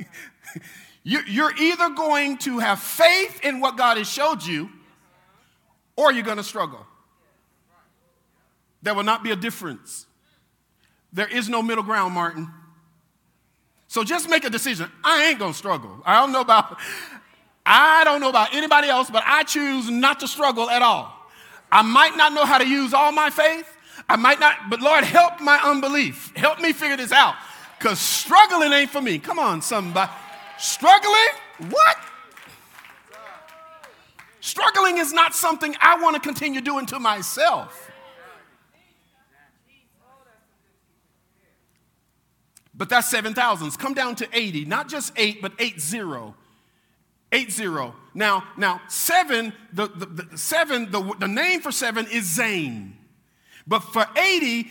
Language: English